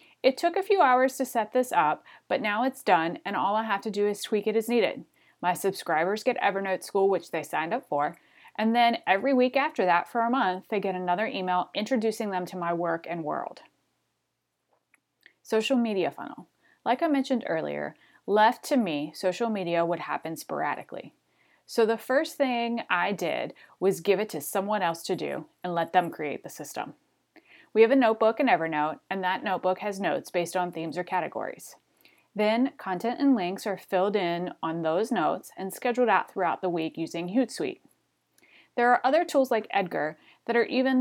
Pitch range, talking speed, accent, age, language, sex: 175-240 Hz, 195 wpm, American, 30-49, English, female